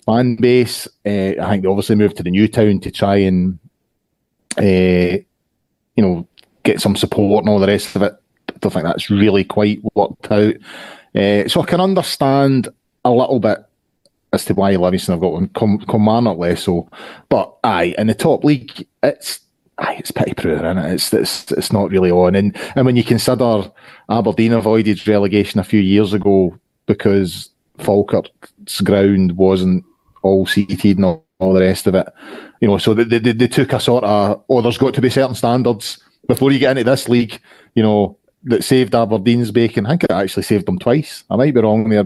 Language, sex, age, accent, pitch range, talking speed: English, male, 30-49, British, 100-120 Hz, 200 wpm